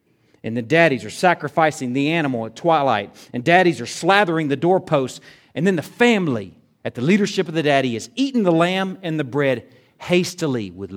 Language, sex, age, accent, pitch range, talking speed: English, male, 40-59, American, 120-180 Hz, 185 wpm